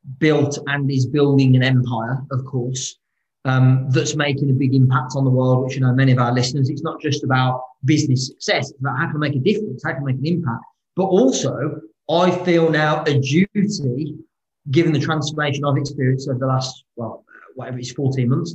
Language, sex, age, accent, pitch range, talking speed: English, male, 30-49, British, 130-155 Hz, 195 wpm